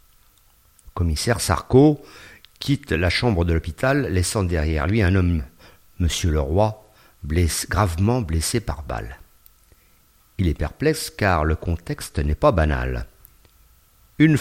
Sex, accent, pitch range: male, French, 80-125 Hz